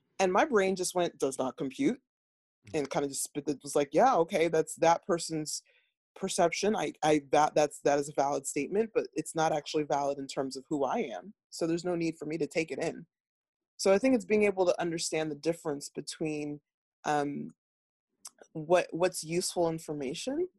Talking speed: 195 wpm